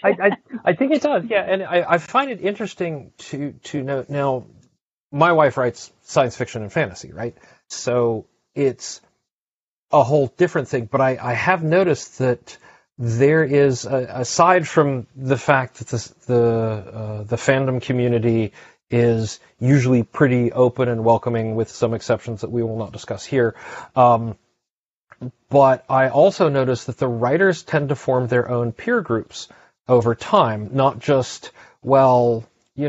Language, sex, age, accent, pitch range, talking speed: English, male, 40-59, American, 120-140 Hz, 160 wpm